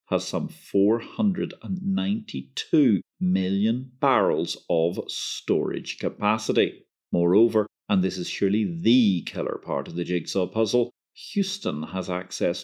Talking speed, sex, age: 110 wpm, male, 40-59